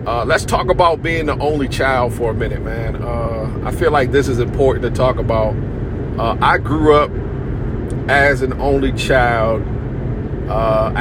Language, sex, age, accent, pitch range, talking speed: English, male, 40-59, American, 115-140 Hz, 170 wpm